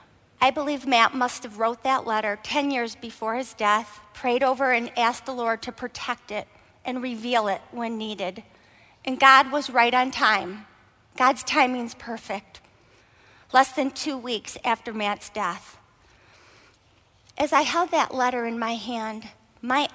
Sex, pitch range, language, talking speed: female, 225-260 Hz, English, 155 wpm